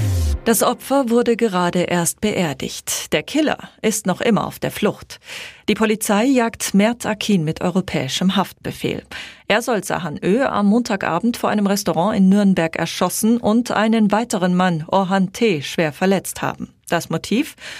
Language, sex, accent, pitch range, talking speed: German, female, German, 175-220 Hz, 150 wpm